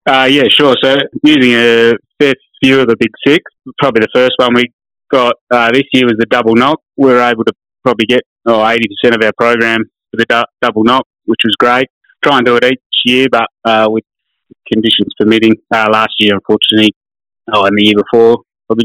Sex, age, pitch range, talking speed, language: male, 20-39, 110-125 Hz, 205 wpm, English